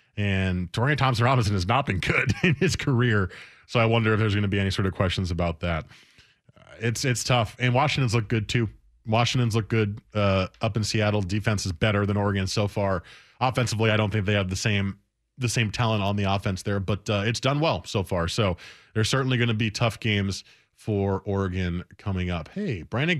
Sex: male